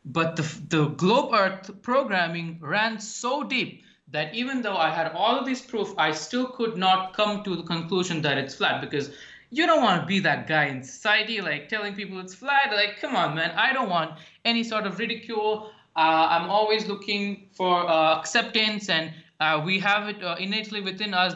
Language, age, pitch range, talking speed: English, 20-39, 165-215 Hz, 200 wpm